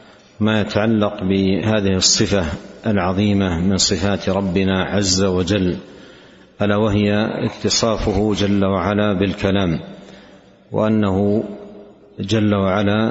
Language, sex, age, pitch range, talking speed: Arabic, male, 60-79, 95-105 Hz, 85 wpm